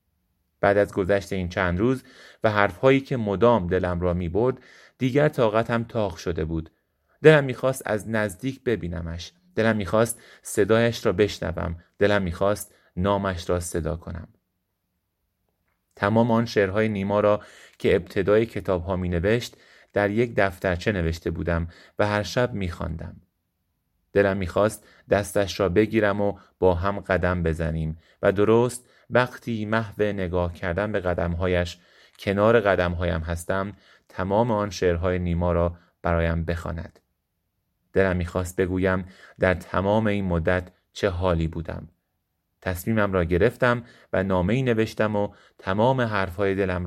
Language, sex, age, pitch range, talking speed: Persian, male, 30-49, 85-105 Hz, 135 wpm